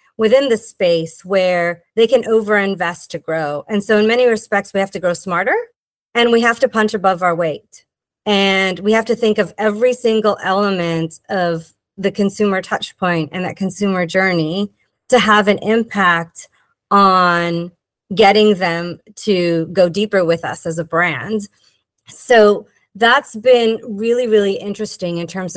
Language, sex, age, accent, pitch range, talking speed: English, female, 30-49, American, 175-220 Hz, 160 wpm